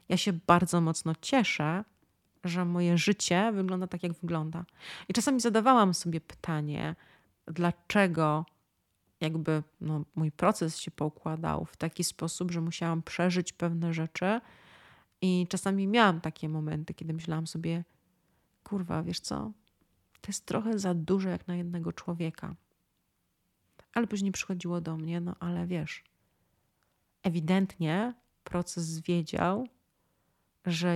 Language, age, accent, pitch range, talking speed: Polish, 30-49, native, 160-190 Hz, 125 wpm